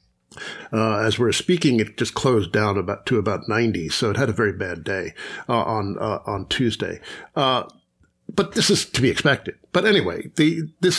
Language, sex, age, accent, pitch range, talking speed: English, male, 50-69, American, 110-140 Hz, 185 wpm